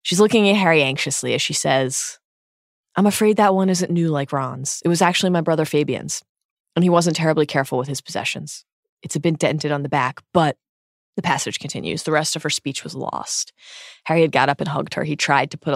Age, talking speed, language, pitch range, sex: 20-39, 225 wpm, English, 145-185 Hz, female